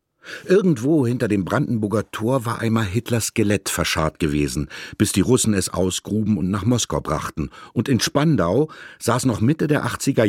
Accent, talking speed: German, 165 wpm